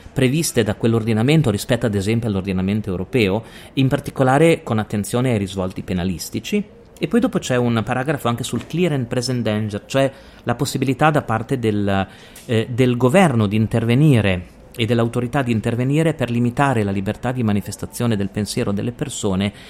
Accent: native